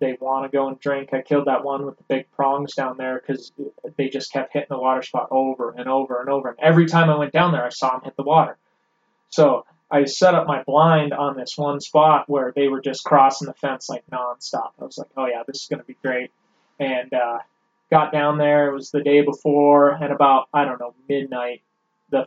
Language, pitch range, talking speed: English, 135-155 Hz, 240 wpm